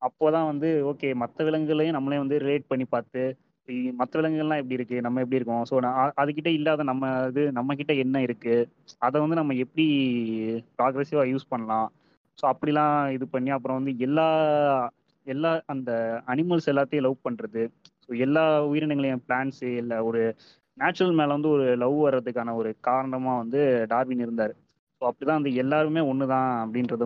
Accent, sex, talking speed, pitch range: native, male, 155 wpm, 125-150 Hz